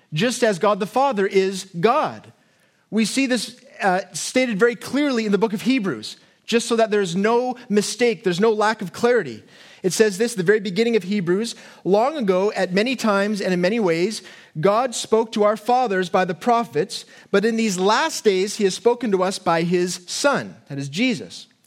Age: 30-49